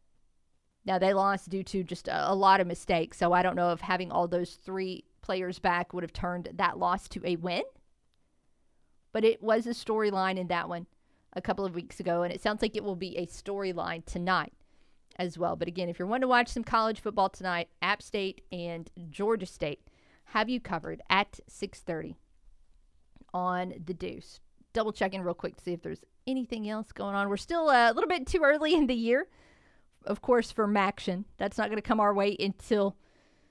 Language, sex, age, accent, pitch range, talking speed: English, female, 40-59, American, 175-220 Hz, 205 wpm